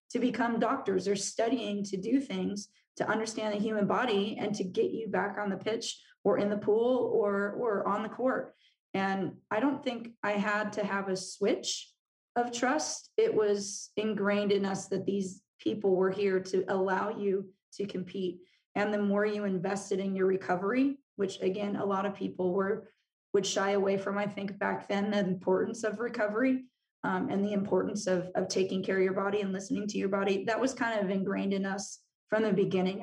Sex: female